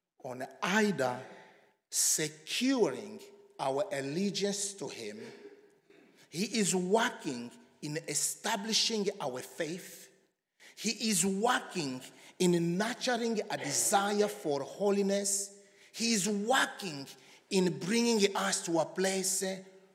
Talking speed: 95 wpm